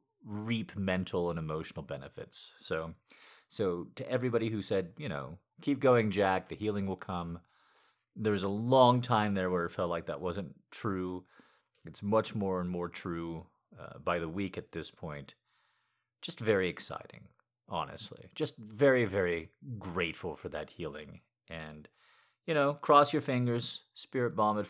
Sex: male